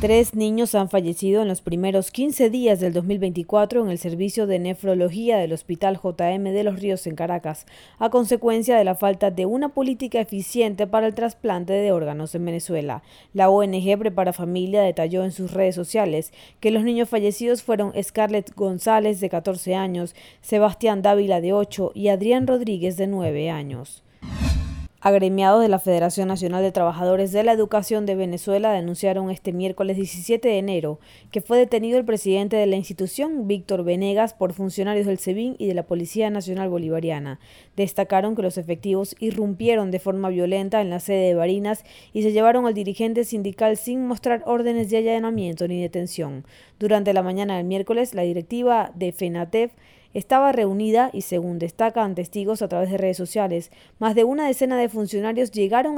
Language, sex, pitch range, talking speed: Spanish, female, 180-220 Hz, 170 wpm